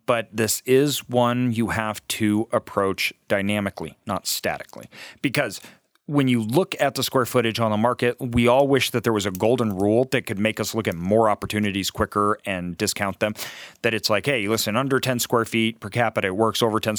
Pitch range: 100-125 Hz